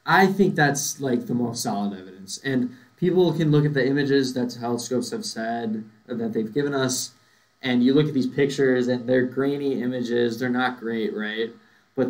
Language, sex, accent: English, male, American